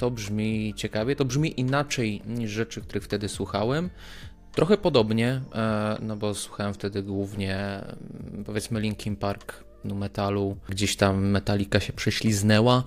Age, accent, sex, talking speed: 20-39, native, male, 130 wpm